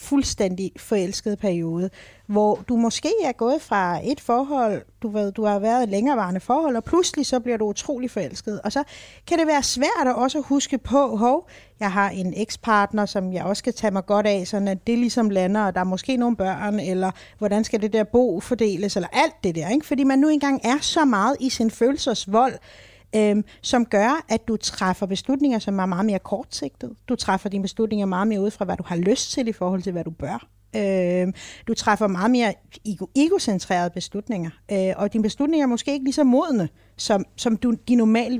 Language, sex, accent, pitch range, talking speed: Danish, female, native, 190-250 Hz, 210 wpm